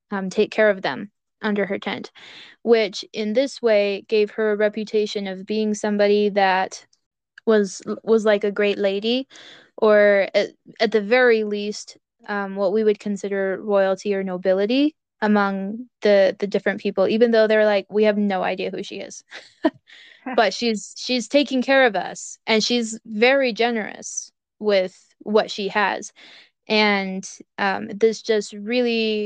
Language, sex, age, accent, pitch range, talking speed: English, female, 20-39, American, 200-225 Hz, 155 wpm